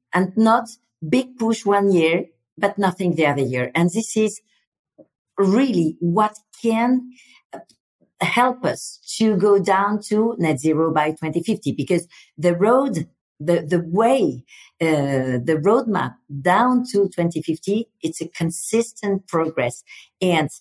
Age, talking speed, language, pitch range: 50-69, 130 wpm, English, 165-220 Hz